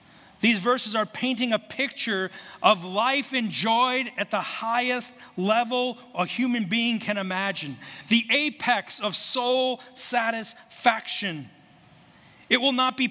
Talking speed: 125 wpm